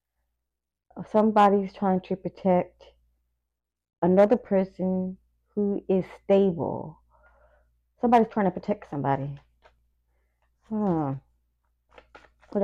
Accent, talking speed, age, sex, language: American, 75 wpm, 20-39, female, English